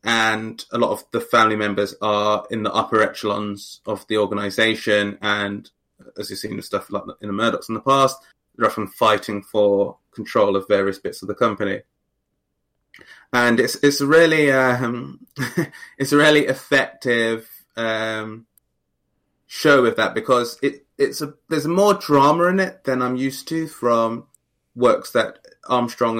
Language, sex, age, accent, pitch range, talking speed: English, male, 20-39, British, 105-135 Hz, 160 wpm